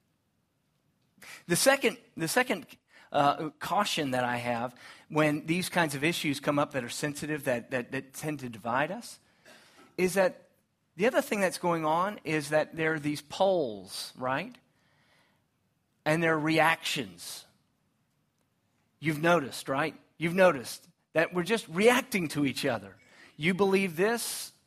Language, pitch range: English, 130-180 Hz